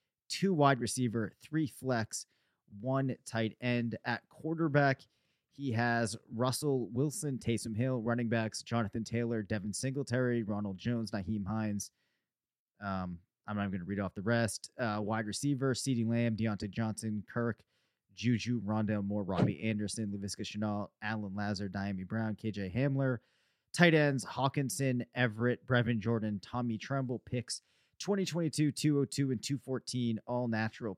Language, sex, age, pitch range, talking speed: English, male, 30-49, 110-130 Hz, 140 wpm